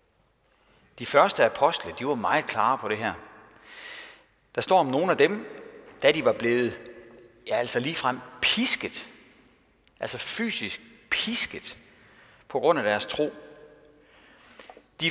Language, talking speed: Danish, 130 wpm